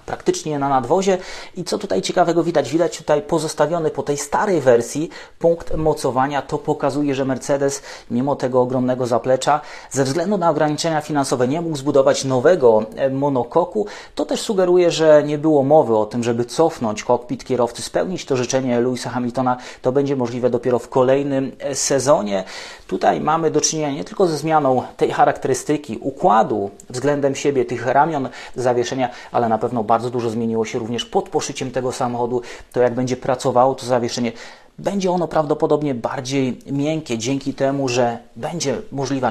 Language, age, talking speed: English, 30-49, 160 wpm